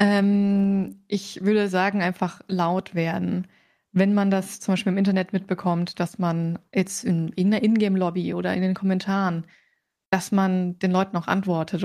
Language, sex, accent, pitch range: German, female, German, 180-200 Hz